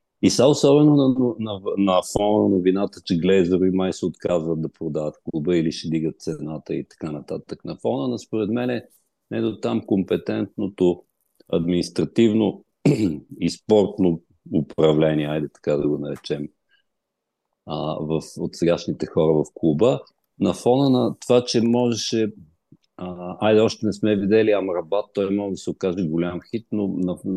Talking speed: 155 wpm